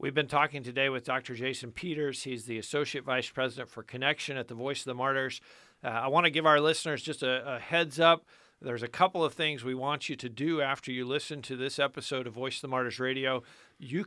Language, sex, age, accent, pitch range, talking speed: English, male, 50-69, American, 135-170 Hz, 240 wpm